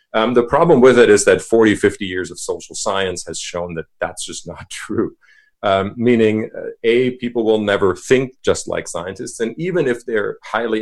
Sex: male